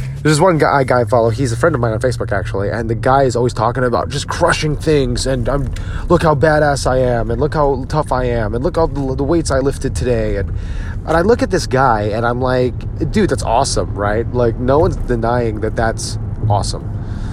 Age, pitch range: 30-49, 105-135 Hz